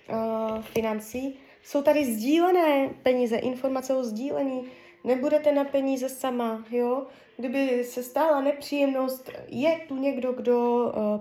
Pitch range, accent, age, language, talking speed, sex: 245-300 Hz, native, 20-39, Czech, 120 wpm, female